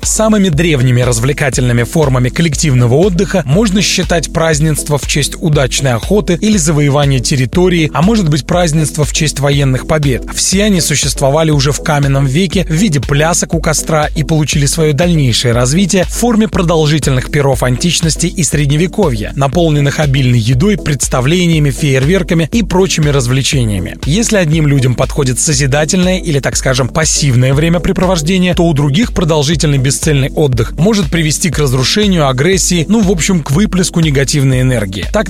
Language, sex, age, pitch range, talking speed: Russian, male, 30-49, 140-180 Hz, 145 wpm